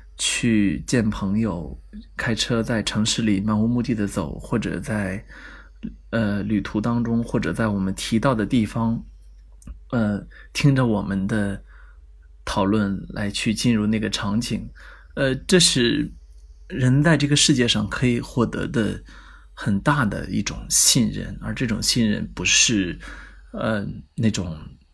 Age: 20-39